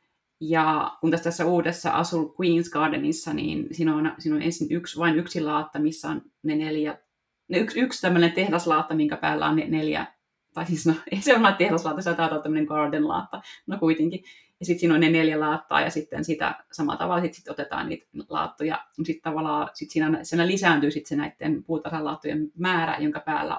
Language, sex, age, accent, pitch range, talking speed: Finnish, female, 30-49, native, 155-170 Hz, 190 wpm